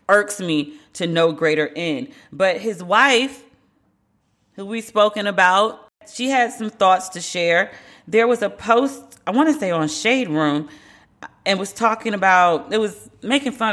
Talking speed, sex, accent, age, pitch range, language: 165 wpm, female, American, 40-59, 150-200 Hz, English